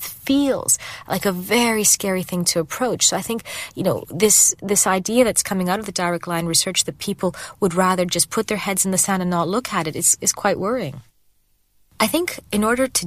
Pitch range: 170-225 Hz